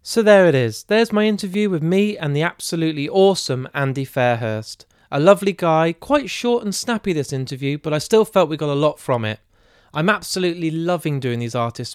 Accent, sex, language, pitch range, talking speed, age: British, male, English, 125-165 Hz, 200 wpm, 20-39